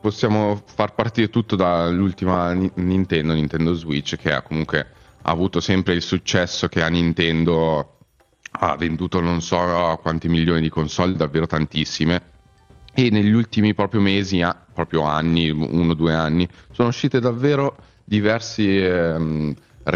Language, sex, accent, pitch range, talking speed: Italian, male, native, 75-95 Hz, 130 wpm